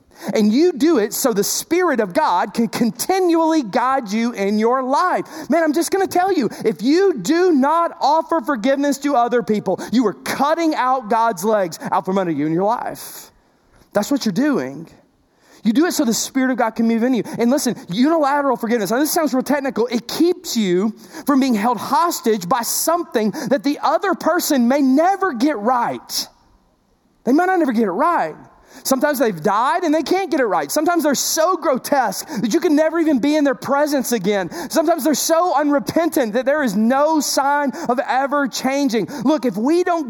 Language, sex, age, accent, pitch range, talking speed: English, male, 30-49, American, 225-315 Hz, 200 wpm